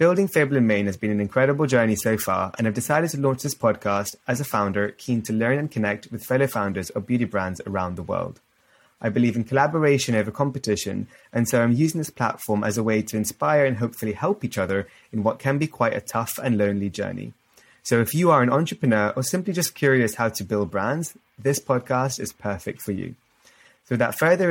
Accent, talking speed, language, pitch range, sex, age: British, 220 wpm, English, 105-135 Hz, male, 20-39